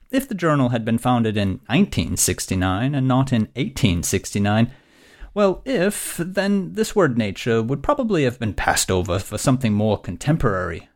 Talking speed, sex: 155 wpm, male